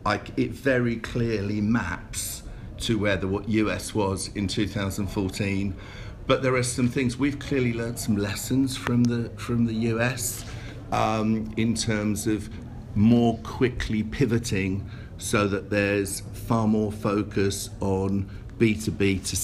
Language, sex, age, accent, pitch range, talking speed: English, male, 50-69, British, 100-115 Hz, 135 wpm